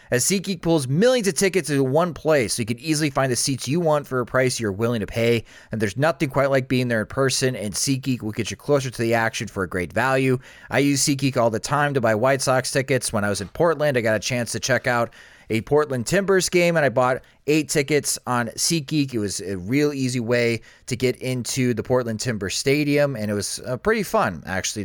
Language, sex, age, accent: English, male, 30-49, American